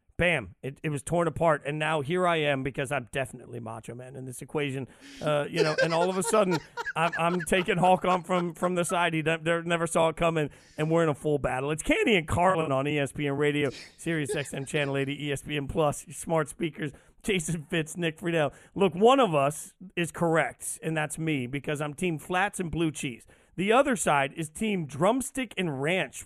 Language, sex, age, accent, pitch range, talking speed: English, male, 40-59, American, 150-185 Hz, 205 wpm